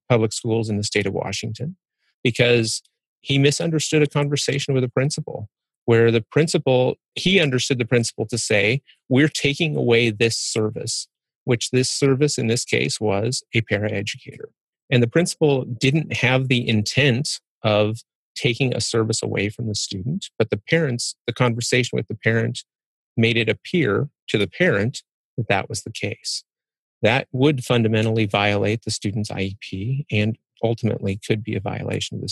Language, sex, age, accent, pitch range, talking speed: English, male, 30-49, American, 110-135 Hz, 160 wpm